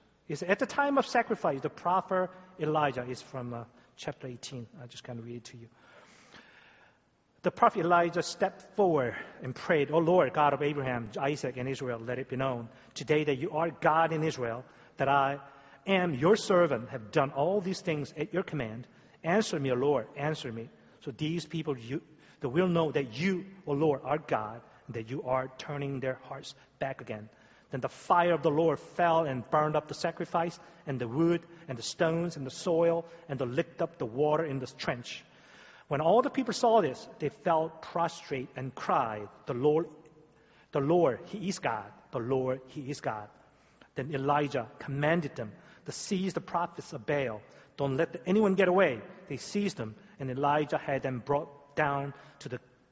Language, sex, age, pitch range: Korean, male, 40-59, 130-170 Hz